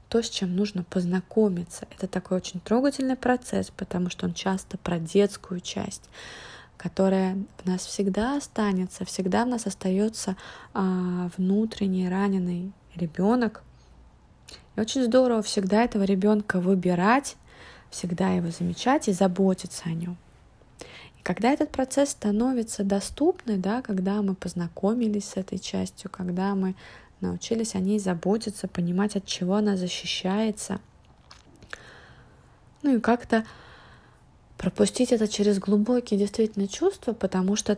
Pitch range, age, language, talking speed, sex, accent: 185-215 Hz, 20-39, Russian, 120 wpm, female, native